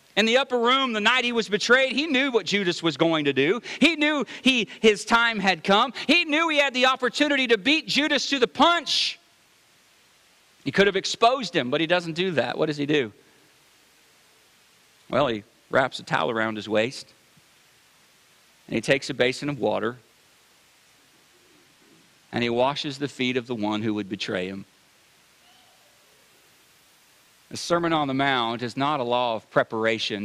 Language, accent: English, American